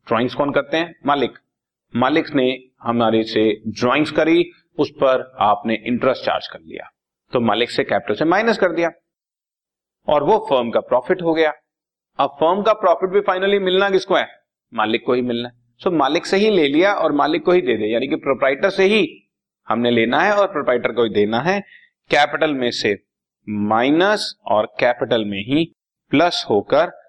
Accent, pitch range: native, 120-175 Hz